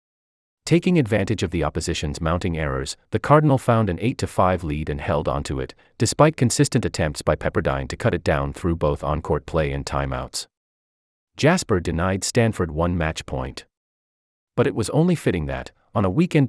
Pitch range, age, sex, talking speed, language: 75-125 Hz, 30-49, male, 170 wpm, English